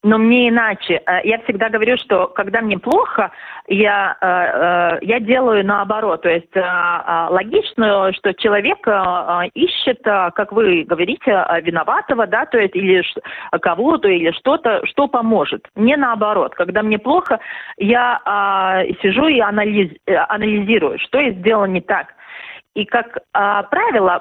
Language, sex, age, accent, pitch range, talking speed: Russian, female, 30-49, native, 180-225 Hz, 125 wpm